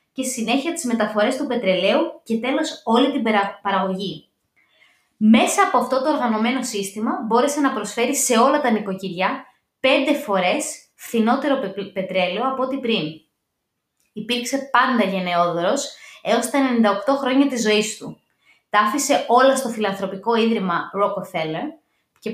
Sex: female